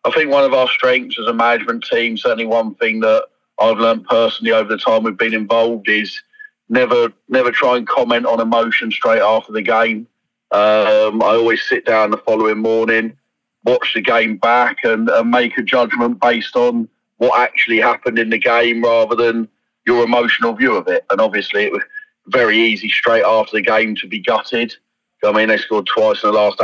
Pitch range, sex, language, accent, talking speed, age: 115-130 Hz, male, English, British, 200 wpm, 30-49